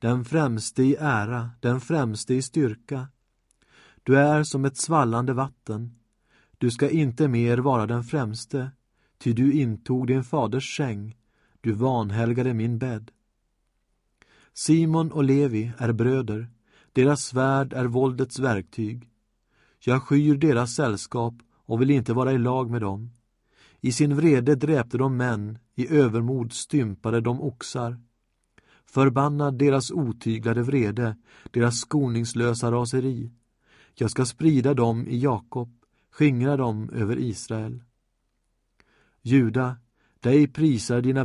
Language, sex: Swedish, male